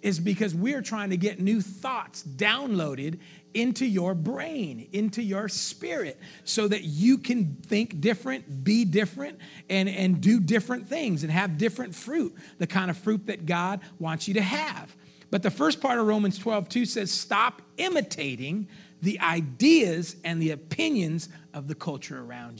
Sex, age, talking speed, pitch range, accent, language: male, 40-59, 165 wpm, 170-225 Hz, American, English